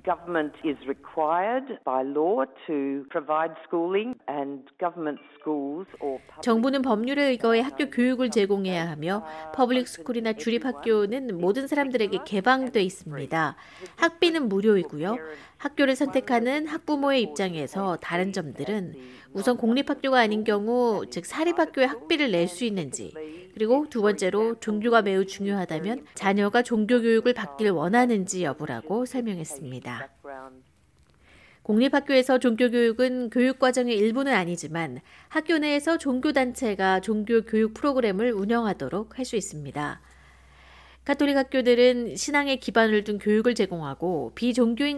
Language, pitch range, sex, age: Korean, 170-250 Hz, female, 60-79